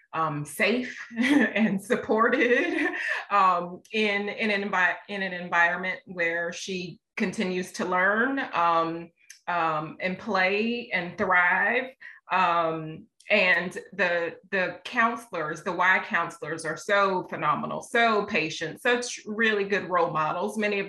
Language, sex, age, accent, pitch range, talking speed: English, female, 30-49, American, 170-220 Hz, 125 wpm